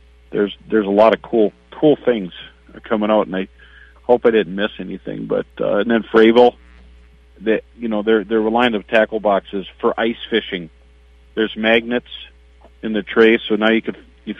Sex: male